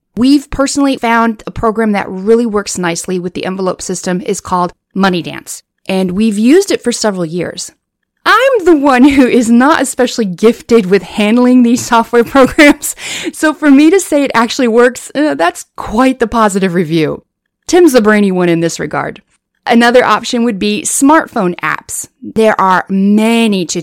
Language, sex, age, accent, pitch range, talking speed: English, female, 30-49, American, 195-265 Hz, 170 wpm